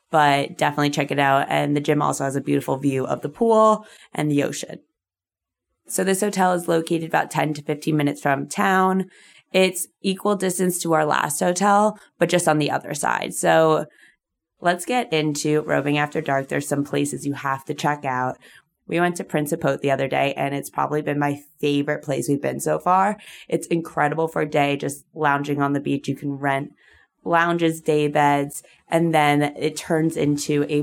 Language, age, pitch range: English, 20-39, 145-170 Hz